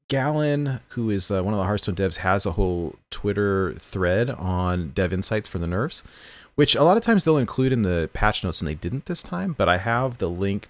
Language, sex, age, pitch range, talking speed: English, male, 30-49, 90-120 Hz, 230 wpm